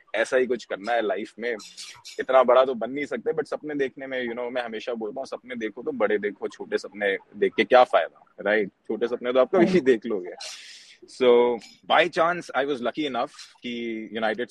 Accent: Indian